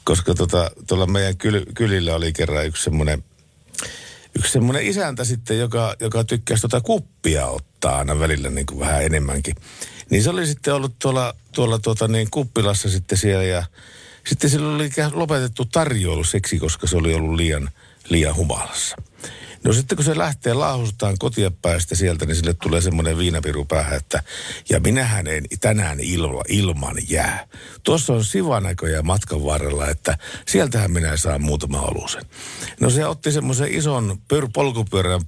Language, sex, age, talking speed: Finnish, male, 60-79, 150 wpm